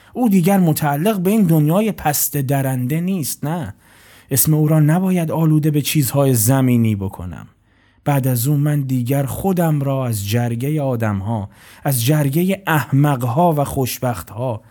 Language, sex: Persian, male